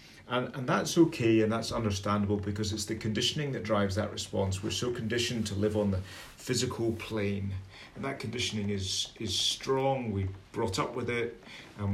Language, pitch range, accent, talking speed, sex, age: English, 100-110 Hz, British, 180 wpm, male, 30-49